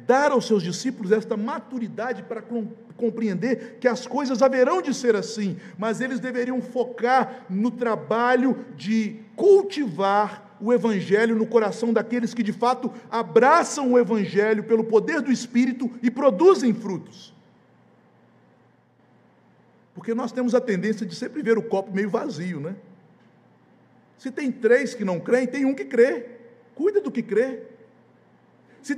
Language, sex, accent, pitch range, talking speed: Portuguese, male, Brazilian, 220-260 Hz, 145 wpm